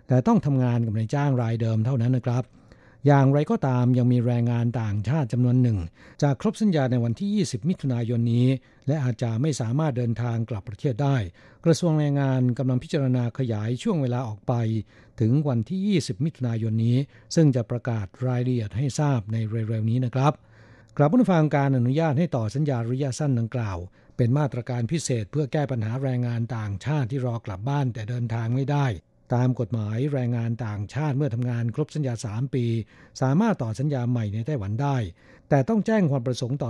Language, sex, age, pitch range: Thai, male, 60-79, 115-145 Hz